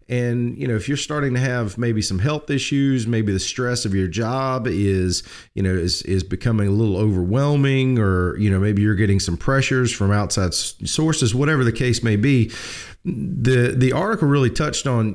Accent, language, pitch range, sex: American, English, 105-130 Hz, male